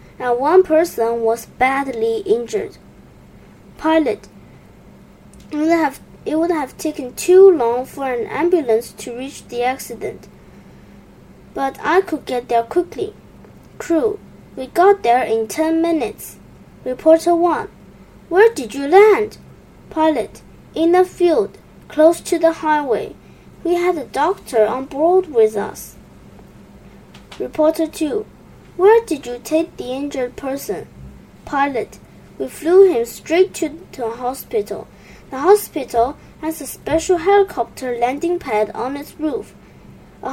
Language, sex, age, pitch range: Chinese, female, 20-39, 260-370 Hz